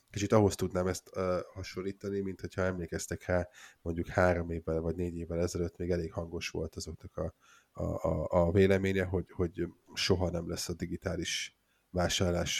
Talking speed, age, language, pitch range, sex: 165 wpm, 20-39, Hungarian, 85-100 Hz, male